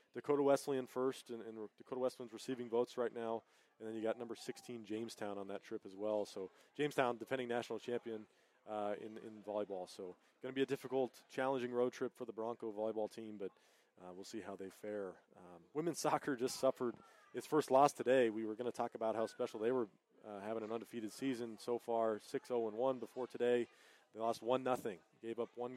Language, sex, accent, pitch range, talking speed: English, male, American, 110-125 Hz, 205 wpm